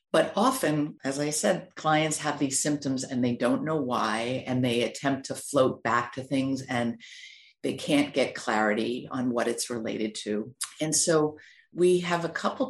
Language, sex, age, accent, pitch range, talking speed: English, female, 50-69, American, 130-160 Hz, 180 wpm